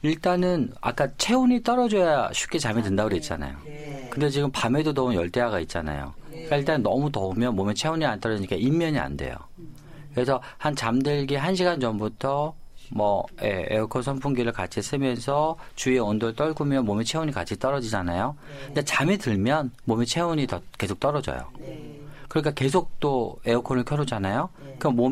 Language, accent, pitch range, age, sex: Korean, native, 110-150 Hz, 40-59, male